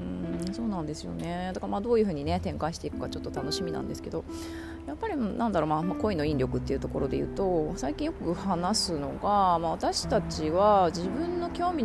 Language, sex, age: Japanese, female, 20-39